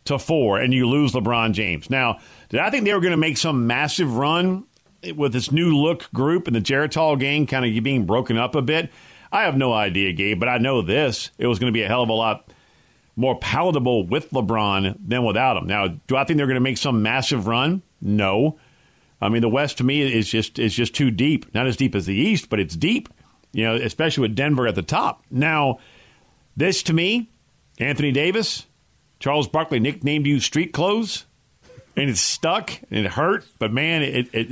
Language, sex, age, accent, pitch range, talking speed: English, male, 50-69, American, 115-150 Hz, 215 wpm